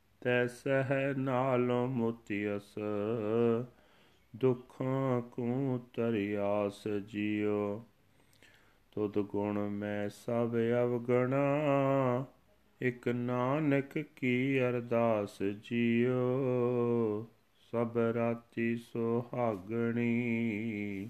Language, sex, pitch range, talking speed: Punjabi, male, 105-125 Hz, 60 wpm